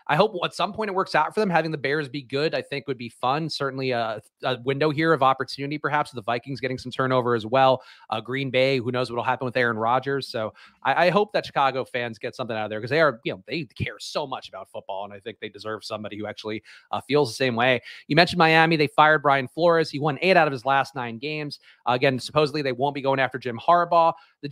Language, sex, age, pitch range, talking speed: English, male, 30-49, 125-160 Hz, 265 wpm